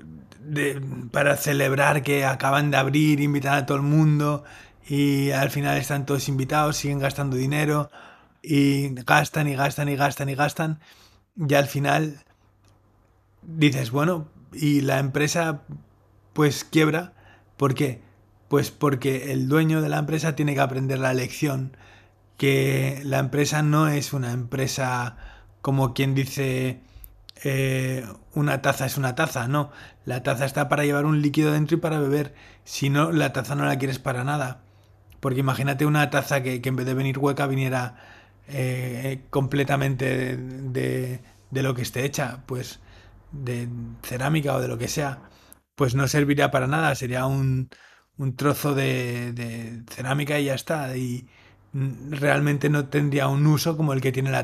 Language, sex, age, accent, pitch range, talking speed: Spanish, male, 20-39, Spanish, 125-145 Hz, 160 wpm